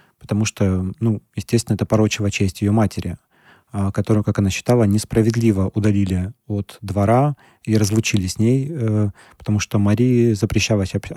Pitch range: 100-115 Hz